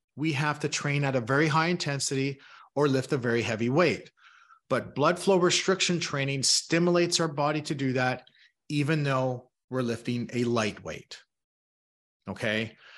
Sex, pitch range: male, 125-165 Hz